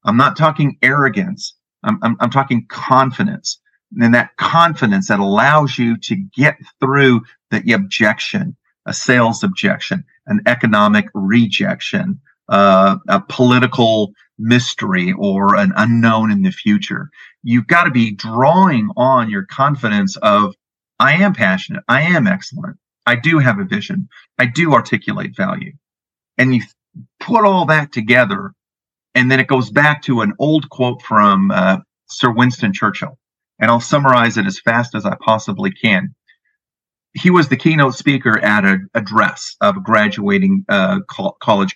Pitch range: 115-190 Hz